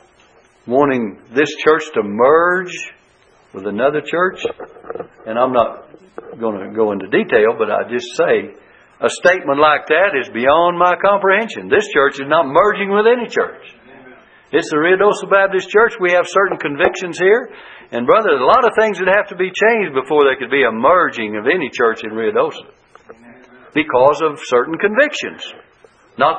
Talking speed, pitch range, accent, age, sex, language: 170 wpm, 165-215 Hz, American, 60-79, male, English